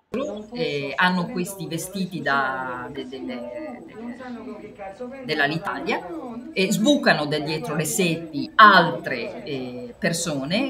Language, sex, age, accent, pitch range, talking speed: Italian, female, 40-59, native, 150-215 Hz, 120 wpm